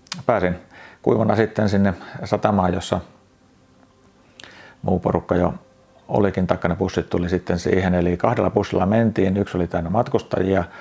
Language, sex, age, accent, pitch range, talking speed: Finnish, male, 40-59, native, 90-100 Hz, 130 wpm